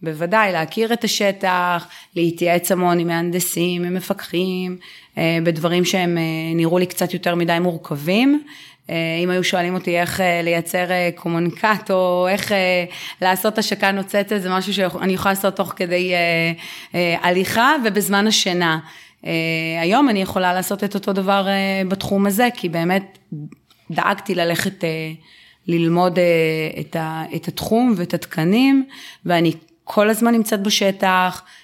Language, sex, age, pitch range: Hebrew, female, 30-49, 170-195 Hz